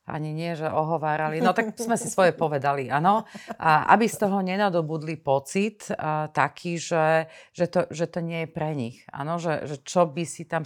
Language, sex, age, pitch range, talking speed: Slovak, female, 40-59, 155-190 Hz, 185 wpm